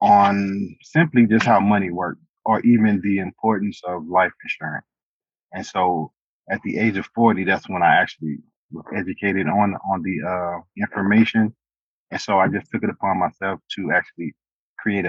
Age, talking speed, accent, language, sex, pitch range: 30-49, 165 wpm, American, English, male, 95-105 Hz